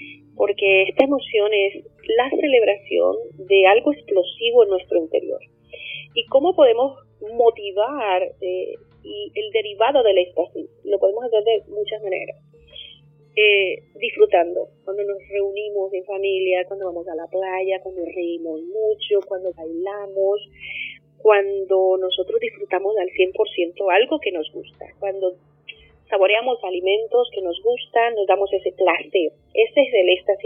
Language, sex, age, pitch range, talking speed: Spanish, female, 30-49, 190-310 Hz, 135 wpm